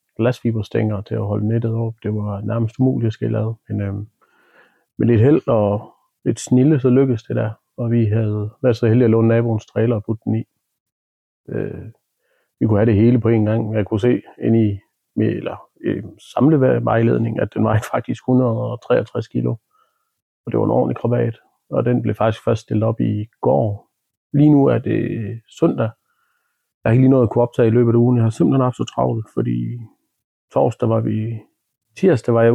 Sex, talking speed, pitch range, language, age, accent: male, 195 wpm, 110-125 Hz, Danish, 40-59, native